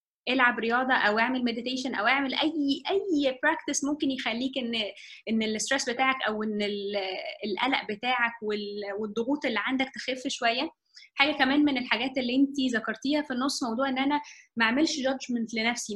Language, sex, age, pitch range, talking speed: Arabic, female, 20-39, 225-280 Hz, 155 wpm